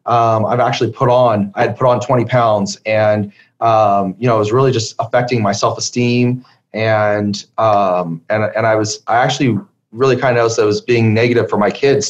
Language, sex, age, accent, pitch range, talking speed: English, male, 30-49, American, 110-130 Hz, 210 wpm